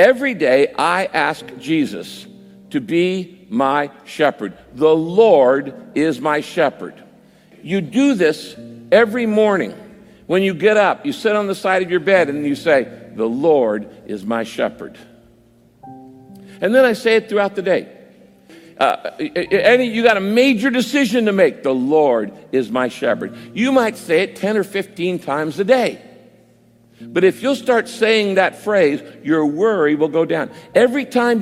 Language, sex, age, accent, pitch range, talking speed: English, male, 60-79, American, 160-225 Hz, 160 wpm